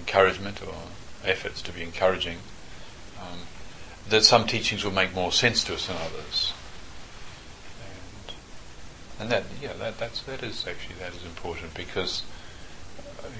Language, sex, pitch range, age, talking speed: English, male, 85-100 Hz, 40-59, 145 wpm